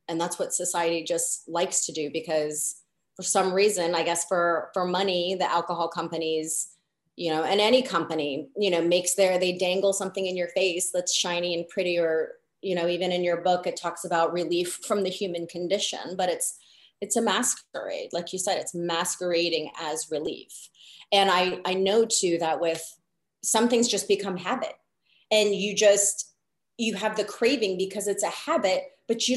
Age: 30-49